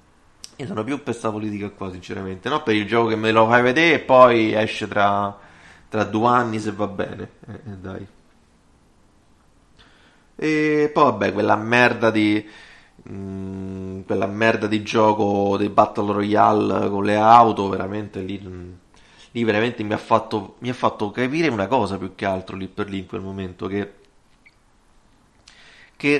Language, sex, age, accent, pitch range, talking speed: Italian, male, 30-49, native, 105-125 Hz, 165 wpm